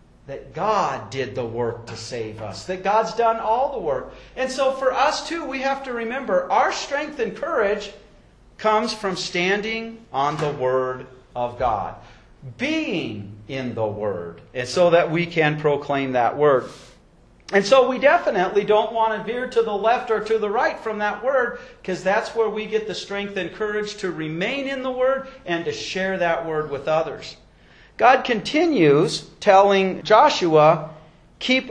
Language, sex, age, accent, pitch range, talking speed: English, male, 40-59, American, 165-230 Hz, 170 wpm